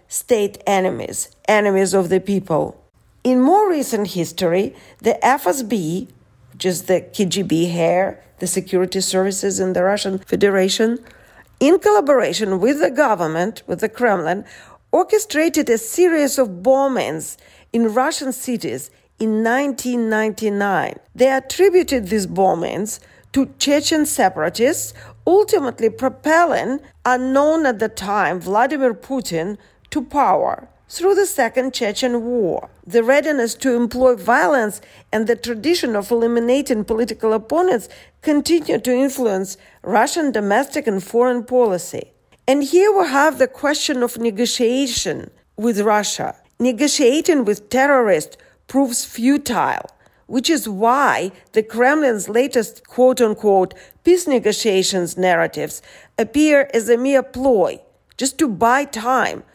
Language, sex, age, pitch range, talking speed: English, female, 40-59, 205-275 Hz, 120 wpm